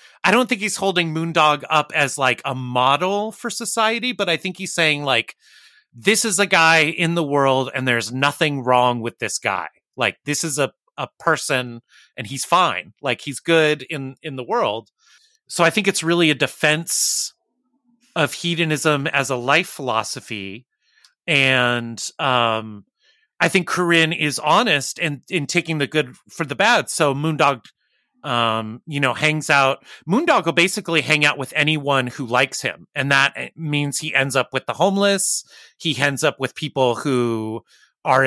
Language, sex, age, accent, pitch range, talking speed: English, male, 30-49, American, 130-165 Hz, 170 wpm